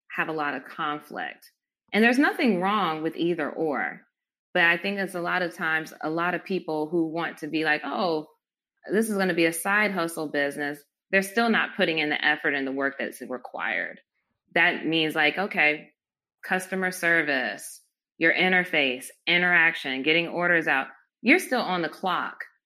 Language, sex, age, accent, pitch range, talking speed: English, female, 20-39, American, 150-185 Hz, 180 wpm